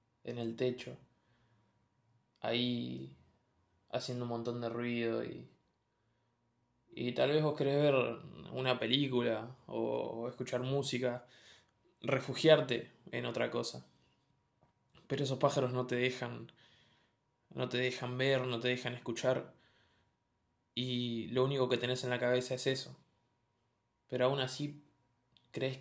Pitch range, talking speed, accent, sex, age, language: 120-130 Hz, 125 wpm, Argentinian, male, 20-39, Spanish